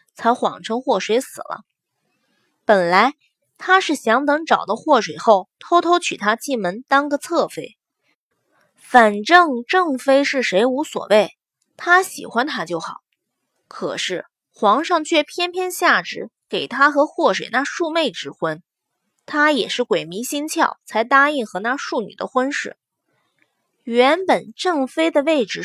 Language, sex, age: Chinese, female, 20-39